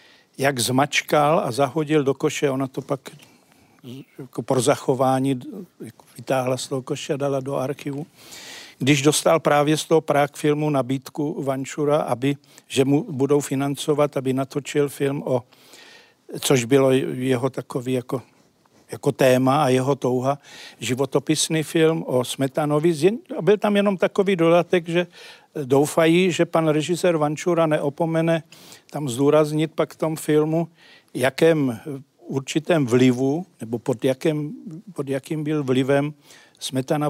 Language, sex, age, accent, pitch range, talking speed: Czech, male, 50-69, native, 135-165 Hz, 130 wpm